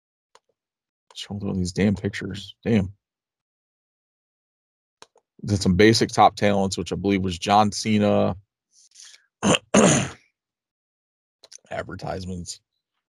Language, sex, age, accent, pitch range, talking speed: English, male, 20-39, American, 95-110 Hz, 80 wpm